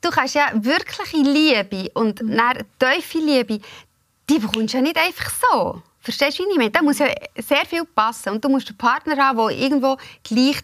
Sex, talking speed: female, 190 wpm